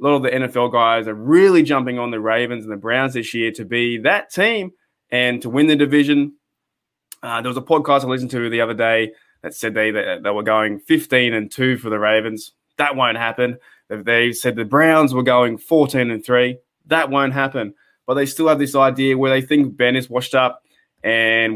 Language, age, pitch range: English, 20-39, 115-145 Hz